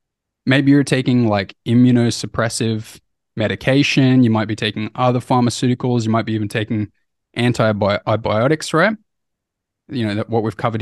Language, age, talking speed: English, 20-39, 140 wpm